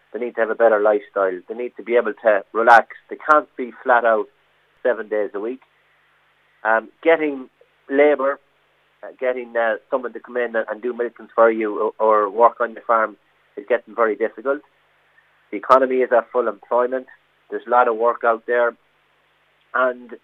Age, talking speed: 30-49, 185 wpm